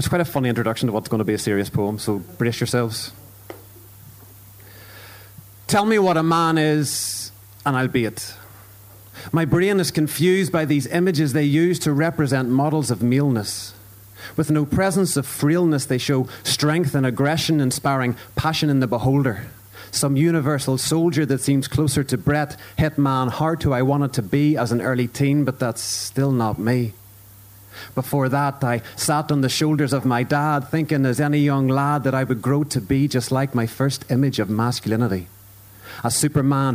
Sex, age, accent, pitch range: male, 30-49, Irish, 110-145 Hz